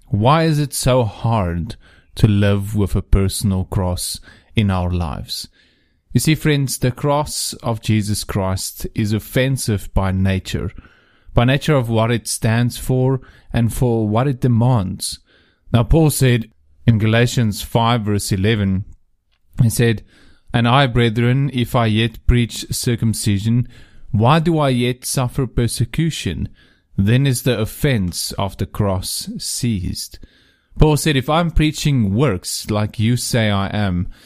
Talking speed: 140 wpm